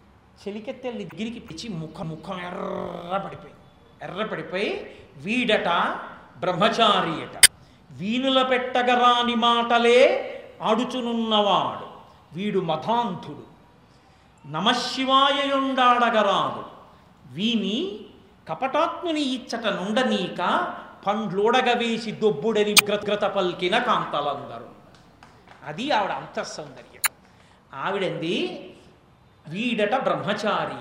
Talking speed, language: 60 wpm, Telugu